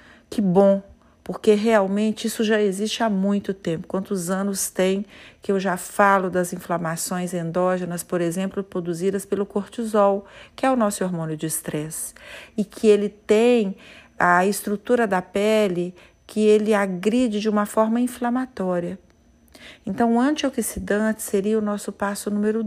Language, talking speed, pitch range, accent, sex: Portuguese, 145 wpm, 185-230 Hz, Brazilian, female